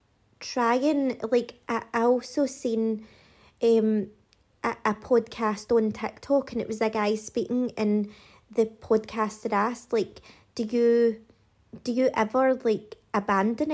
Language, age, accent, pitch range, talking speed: English, 30-49, British, 215-240 Hz, 125 wpm